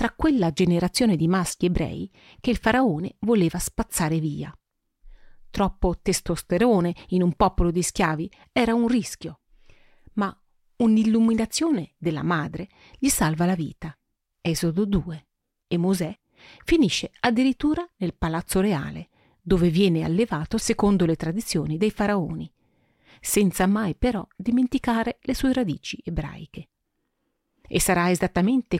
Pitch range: 175-235 Hz